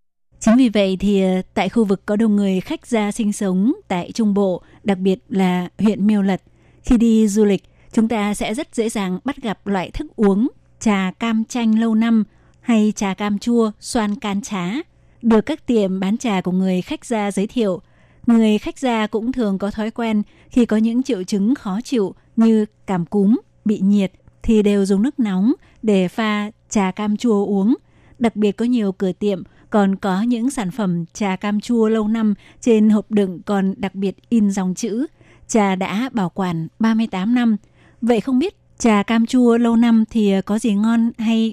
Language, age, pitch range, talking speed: Vietnamese, 20-39, 195-230 Hz, 195 wpm